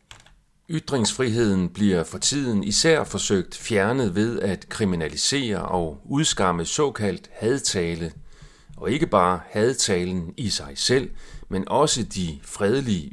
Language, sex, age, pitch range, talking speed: Danish, male, 40-59, 90-145 Hz, 115 wpm